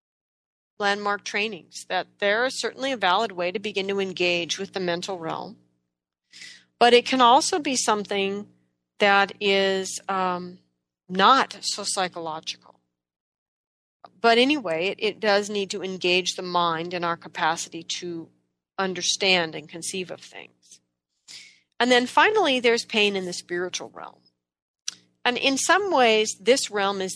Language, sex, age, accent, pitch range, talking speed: English, female, 40-59, American, 160-225 Hz, 140 wpm